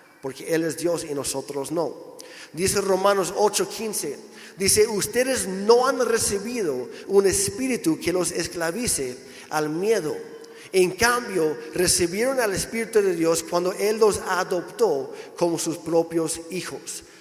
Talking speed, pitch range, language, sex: 130 wpm, 175-215 Hz, Spanish, male